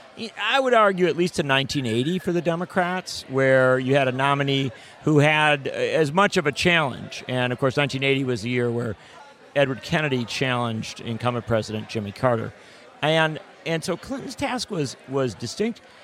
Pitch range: 130-175 Hz